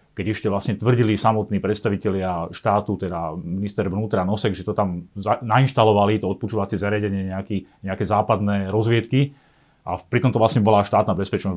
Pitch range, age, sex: 100-115 Hz, 30-49, male